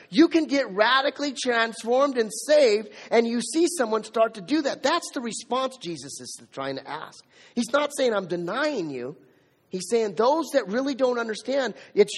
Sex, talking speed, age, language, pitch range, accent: male, 180 wpm, 30-49, English, 175-260 Hz, American